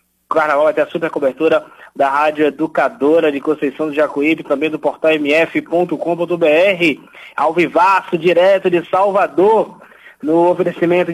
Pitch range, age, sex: 155-185 Hz, 20-39, male